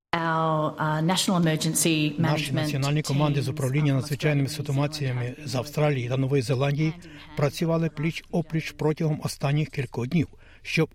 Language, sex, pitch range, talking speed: Ukrainian, male, 135-155 Hz, 105 wpm